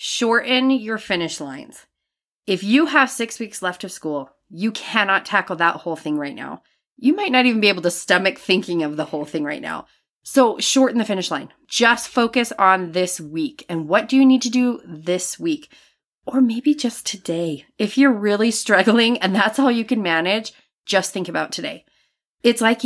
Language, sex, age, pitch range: English, female, 30-49, 175-240 Hz